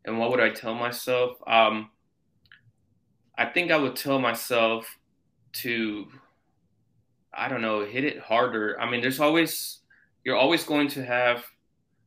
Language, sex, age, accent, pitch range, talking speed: English, male, 20-39, American, 105-130 Hz, 145 wpm